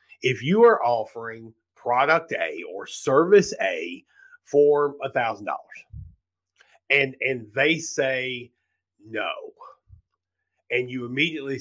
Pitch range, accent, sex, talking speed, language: 115-180 Hz, American, male, 100 wpm, English